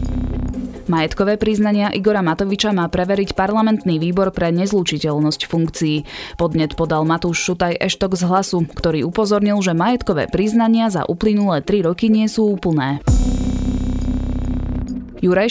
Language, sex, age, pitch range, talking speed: Slovak, female, 20-39, 160-205 Hz, 120 wpm